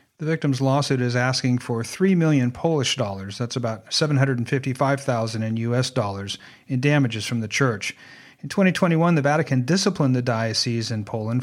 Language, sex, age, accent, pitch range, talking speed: English, male, 40-59, American, 125-150 Hz, 155 wpm